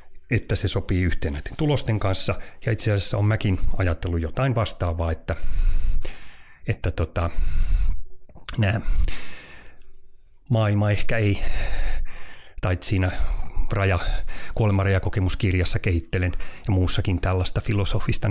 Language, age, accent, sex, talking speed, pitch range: Finnish, 30-49, native, male, 105 wpm, 85-105 Hz